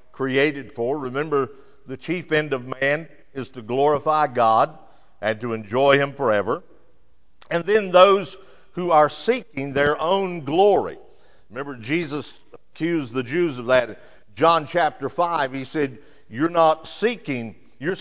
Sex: male